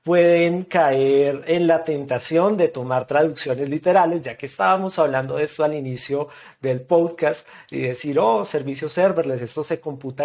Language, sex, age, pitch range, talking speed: Spanish, male, 40-59, 130-170 Hz, 160 wpm